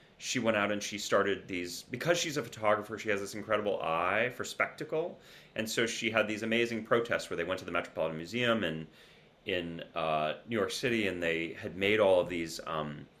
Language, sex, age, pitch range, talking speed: English, male, 30-49, 85-110 Hz, 210 wpm